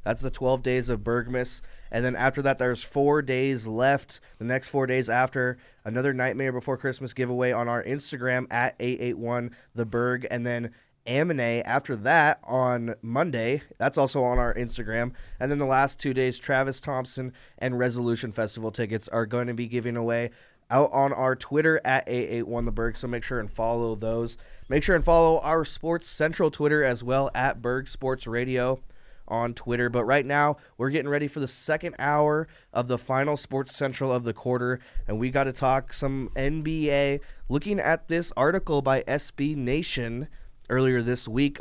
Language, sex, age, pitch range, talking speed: English, male, 20-39, 115-135 Hz, 175 wpm